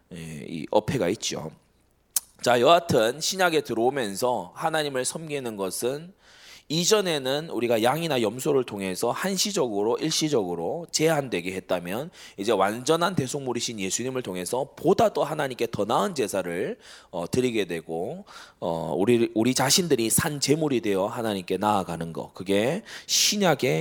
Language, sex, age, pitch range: Korean, male, 20-39, 105-165 Hz